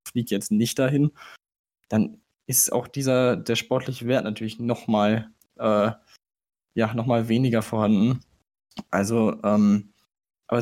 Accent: German